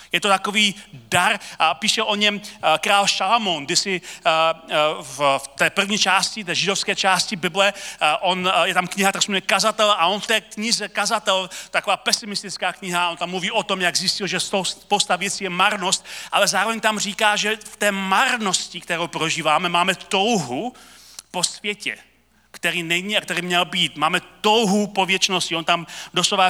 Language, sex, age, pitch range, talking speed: Czech, male, 40-59, 180-215 Hz, 170 wpm